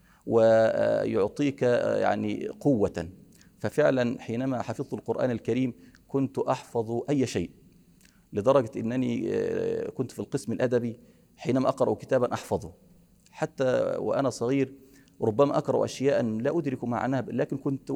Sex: male